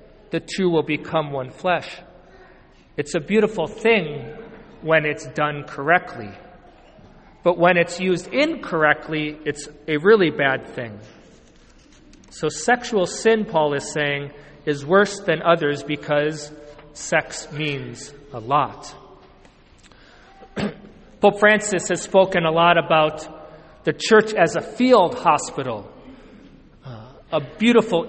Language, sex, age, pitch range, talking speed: English, male, 40-59, 155-190 Hz, 115 wpm